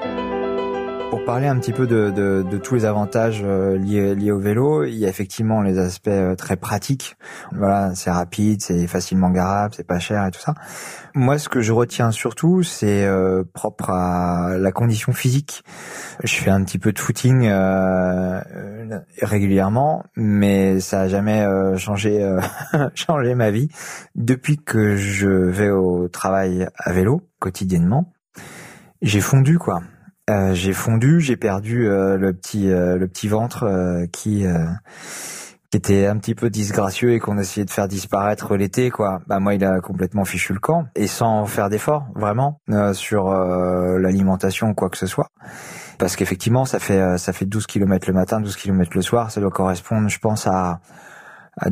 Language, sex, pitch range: French, male, 95-115 Hz